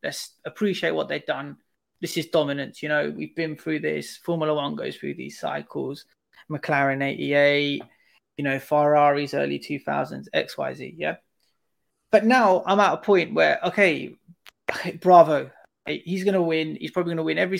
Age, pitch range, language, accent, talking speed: 20-39, 150-195 Hz, English, British, 170 wpm